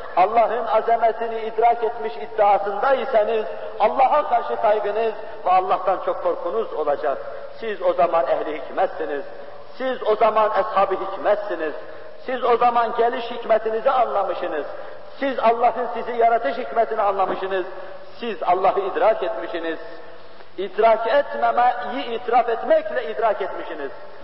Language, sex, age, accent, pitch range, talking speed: Turkish, male, 50-69, native, 190-235 Hz, 110 wpm